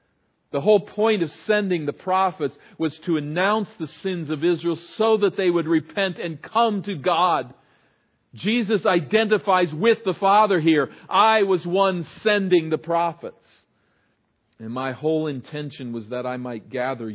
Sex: male